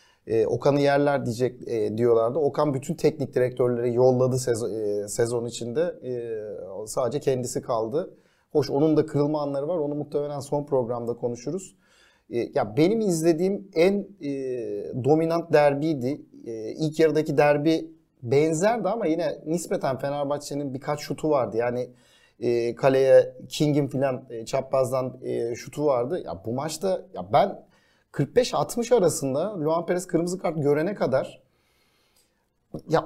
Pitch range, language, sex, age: 135-215 Hz, Turkish, male, 40-59